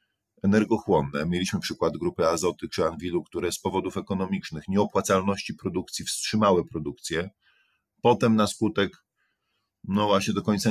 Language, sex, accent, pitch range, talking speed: Polish, male, native, 90-110 Hz, 125 wpm